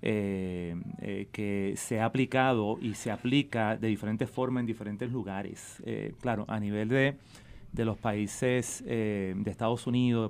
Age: 30-49